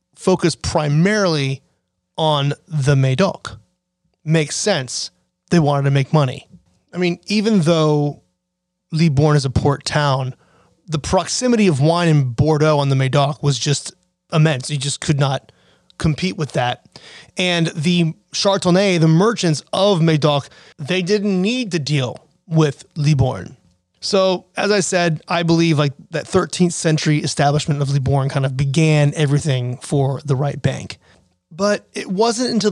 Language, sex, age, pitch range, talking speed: English, male, 30-49, 145-185 Hz, 145 wpm